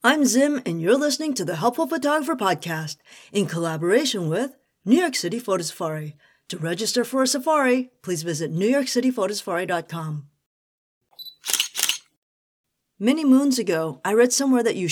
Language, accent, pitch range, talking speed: English, American, 170-260 Hz, 135 wpm